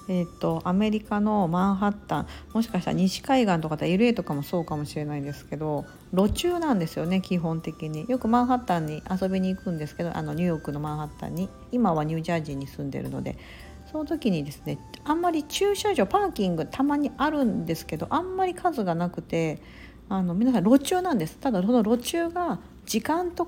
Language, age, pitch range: Japanese, 50-69, 165-250 Hz